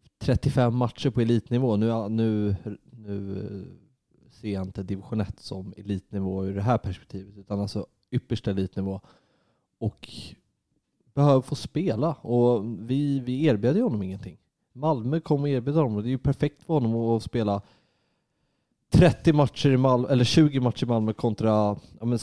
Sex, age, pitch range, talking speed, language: male, 30-49, 100-125 Hz, 155 wpm, English